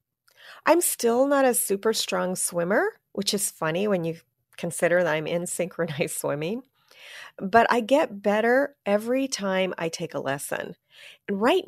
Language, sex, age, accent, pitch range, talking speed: English, female, 40-59, American, 170-245 Hz, 155 wpm